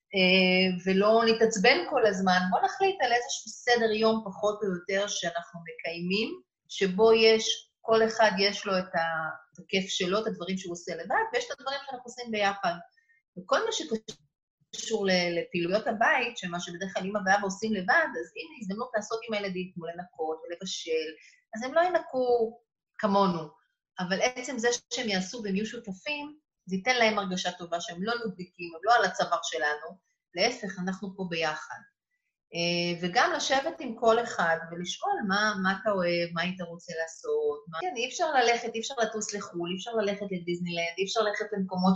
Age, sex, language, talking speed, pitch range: 30-49, female, English, 140 wpm, 180-245 Hz